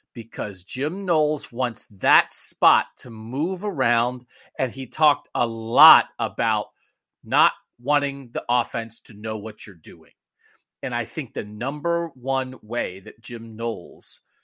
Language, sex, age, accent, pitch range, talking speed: English, male, 40-59, American, 120-165 Hz, 140 wpm